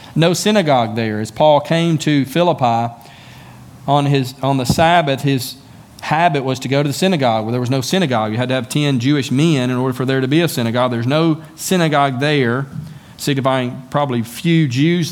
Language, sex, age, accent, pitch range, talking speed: English, male, 40-59, American, 120-145 Hz, 190 wpm